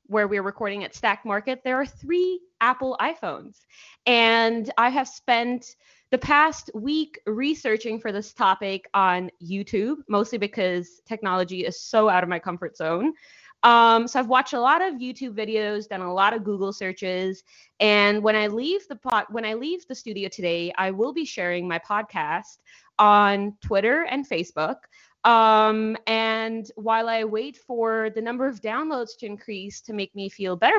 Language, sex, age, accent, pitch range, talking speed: English, female, 20-39, American, 195-245 Hz, 165 wpm